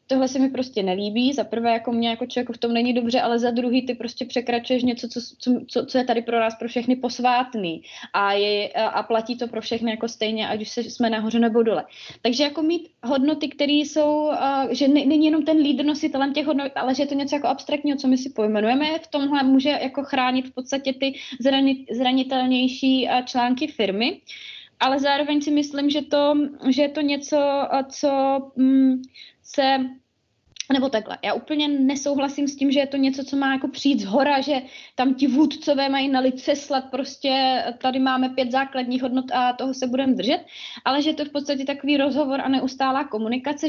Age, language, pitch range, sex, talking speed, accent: 20-39, Czech, 245-280 Hz, female, 200 wpm, native